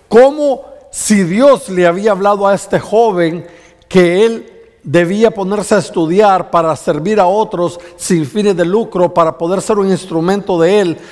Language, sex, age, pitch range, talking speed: Spanish, male, 50-69, 140-210 Hz, 160 wpm